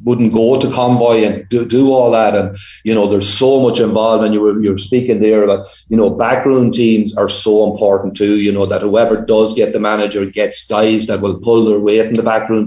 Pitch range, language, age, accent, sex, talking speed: 105-115 Hz, English, 30-49, Irish, male, 235 wpm